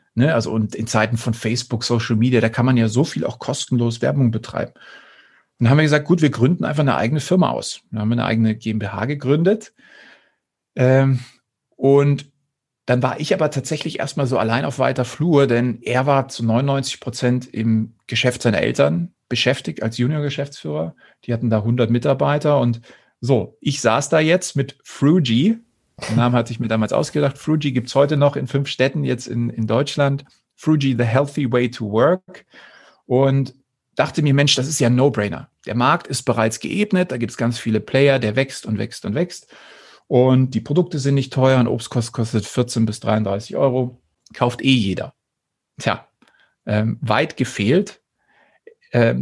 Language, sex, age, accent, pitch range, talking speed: German, male, 40-59, German, 115-140 Hz, 185 wpm